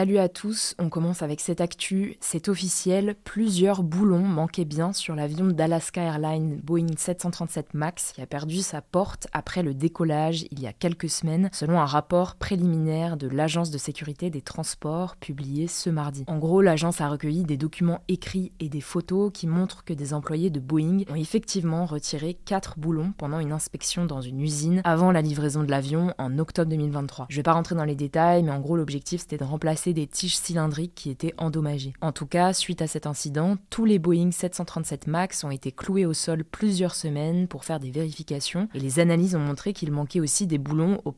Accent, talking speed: French, 200 wpm